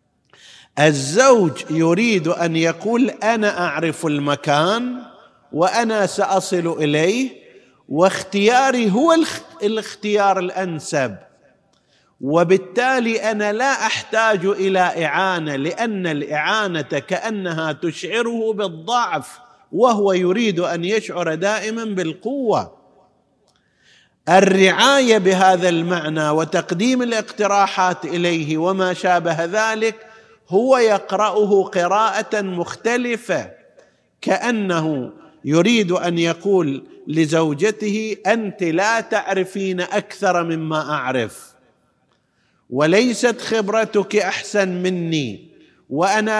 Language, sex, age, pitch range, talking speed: Arabic, male, 50-69, 170-220 Hz, 80 wpm